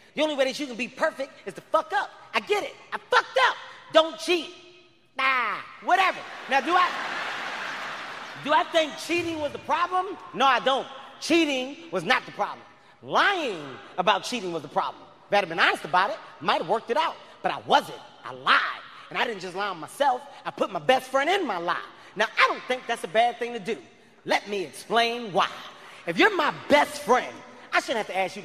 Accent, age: American, 30-49